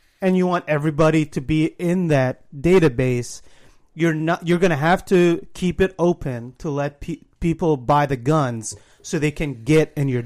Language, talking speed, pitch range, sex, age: English, 185 wpm, 140-170 Hz, male, 30-49